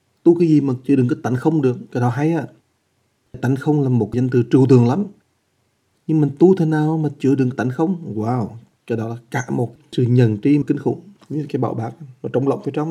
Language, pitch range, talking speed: English, 120-150 Hz, 240 wpm